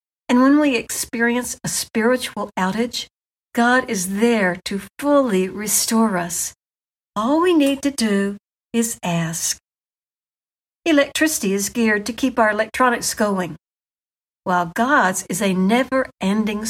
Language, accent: English, American